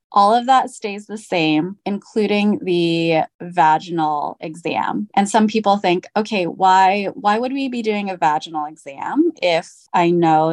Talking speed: 155 wpm